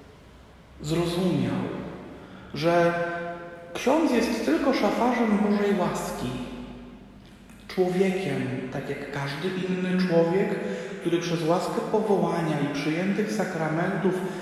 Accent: native